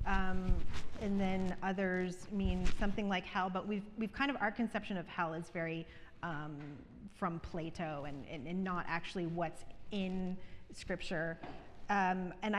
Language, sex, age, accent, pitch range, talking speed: English, female, 30-49, American, 170-200 Hz, 155 wpm